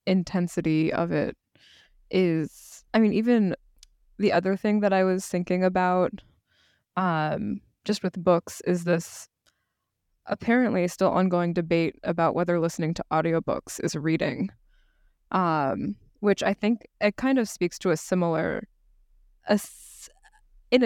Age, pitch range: 20-39, 170-215 Hz